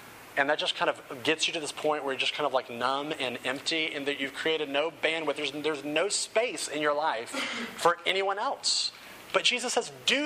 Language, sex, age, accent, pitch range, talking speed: English, male, 30-49, American, 150-210 Hz, 230 wpm